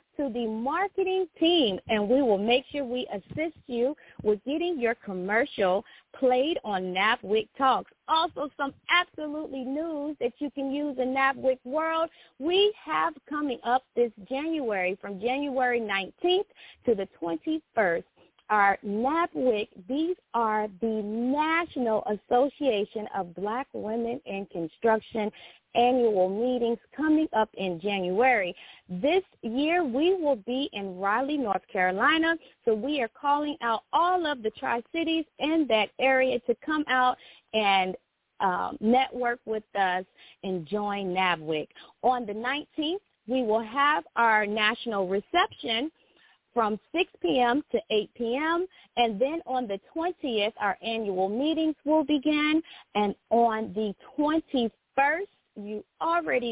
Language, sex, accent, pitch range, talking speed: English, female, American, 215-300 Hz, 130 wpm